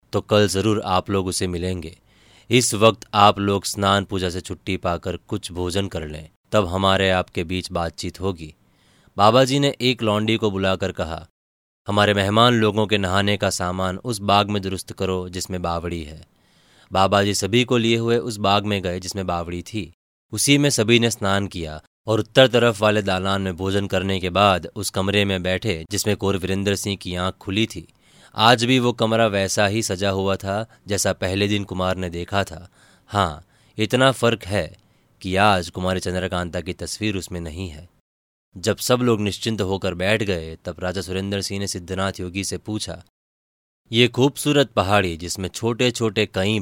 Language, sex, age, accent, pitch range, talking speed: Hindi, male, 30-49, native, 90-110 Hz, 185 wpm